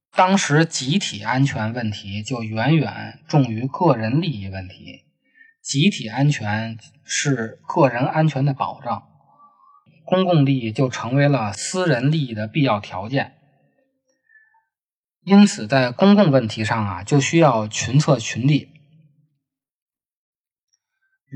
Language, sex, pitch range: Chinese, male, 110-150 Hz